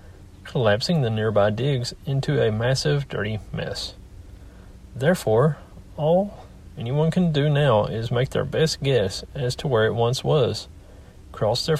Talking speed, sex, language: 140 wpm, male, English